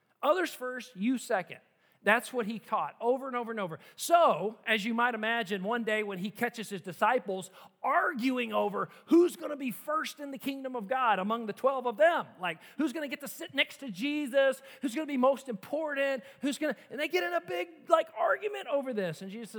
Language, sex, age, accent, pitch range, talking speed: English, male, 40-59, American, 205-270 Hz, 225 wpm